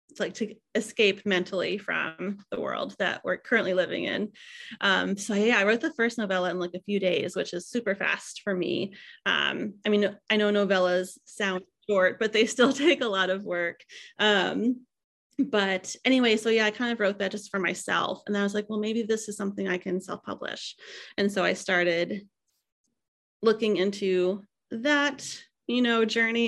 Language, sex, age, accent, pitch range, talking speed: English, female, 30-49, American, 185-225 Hz, 185 wpm